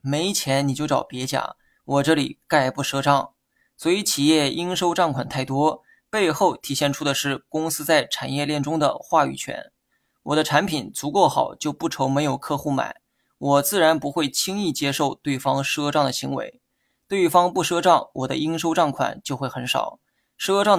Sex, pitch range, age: male, 140-170 Hz, 20-39